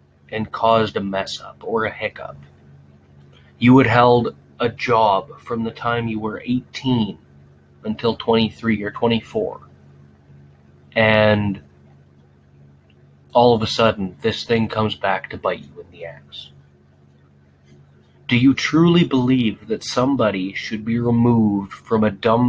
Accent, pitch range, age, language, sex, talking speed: American, 70-120 Hz, 30-49, English, male, 135 wpm